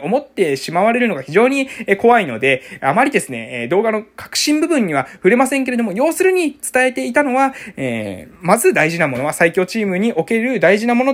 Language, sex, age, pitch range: Japanese, male, 20-39, 175-275 Hz